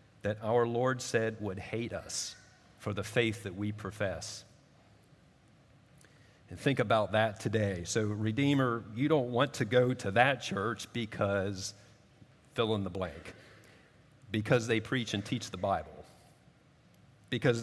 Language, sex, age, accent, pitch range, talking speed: English, male, 40-59, American, 105-130 Hz, 140 wpm